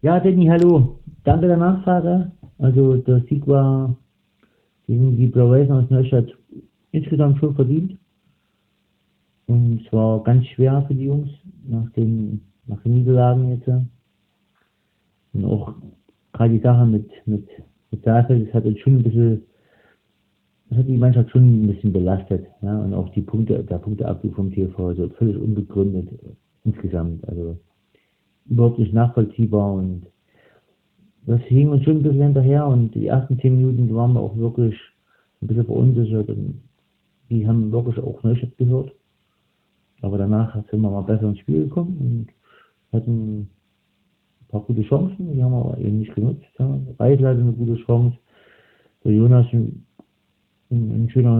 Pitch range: 105-130 Hz